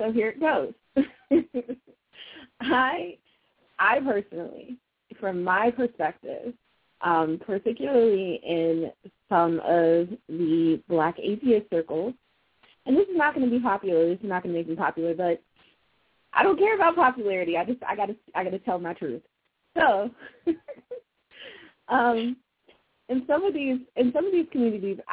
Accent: American